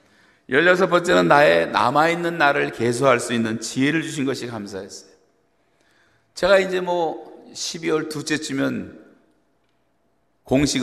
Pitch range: 120-160 Hz